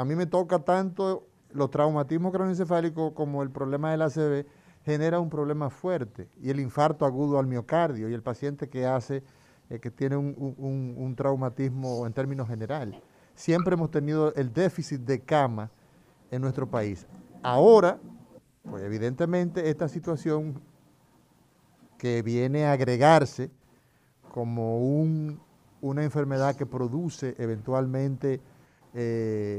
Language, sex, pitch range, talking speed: Spanish, male, 120-150 Hz, 130 wpm